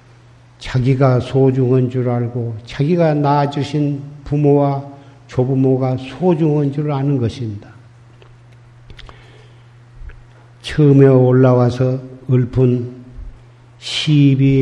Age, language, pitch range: 50-69, Korean, 120-145 Hz